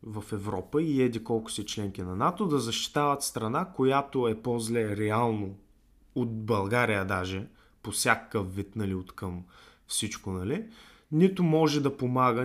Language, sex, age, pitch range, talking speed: Bulgarian, male, 20-39, 110-155 Hz, 145 wpm